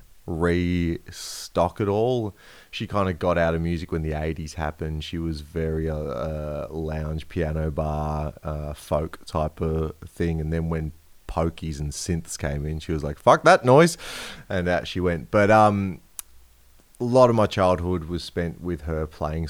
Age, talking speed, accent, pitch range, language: 30-49, 170 wpm, Australian, 75-90 Hz, English